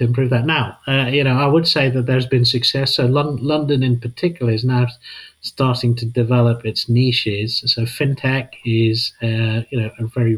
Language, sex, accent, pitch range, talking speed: English, male, British, 115-125 Hz, 190 wpm